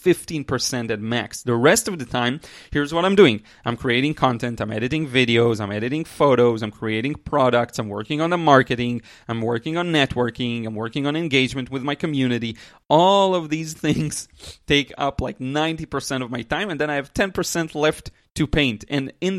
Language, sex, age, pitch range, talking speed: English, male, 30-49, 120-150 Hz, 185 wpm